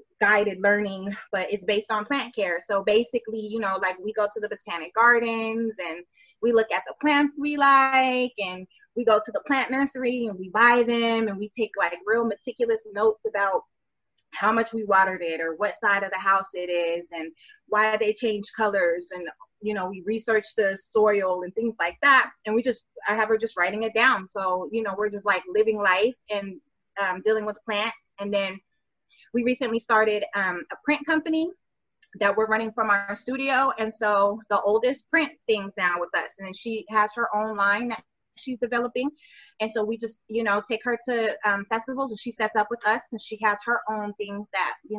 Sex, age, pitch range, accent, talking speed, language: female, 20-39, 200-235 Hz, American, 210 wpm, English